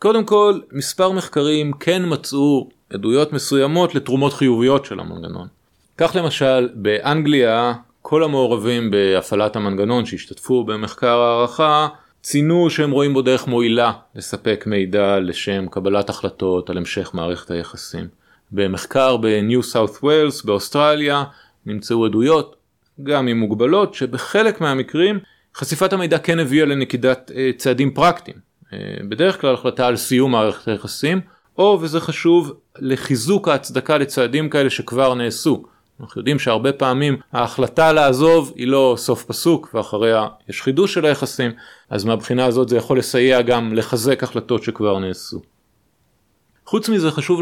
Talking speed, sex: 130 wpm, male